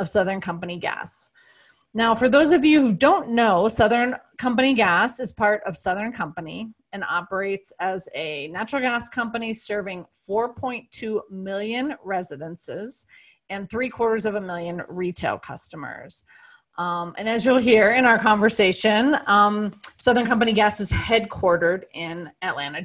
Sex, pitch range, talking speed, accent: female, 195-250 Hz, 145 wpm, American